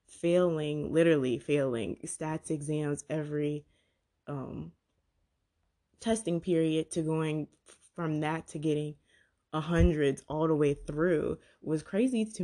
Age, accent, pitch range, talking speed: 20-39, American, 145-165 Hz, 115 wpm